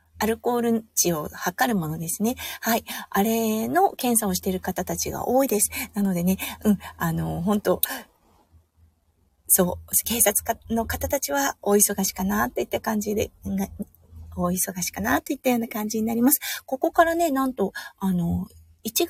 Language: Japanese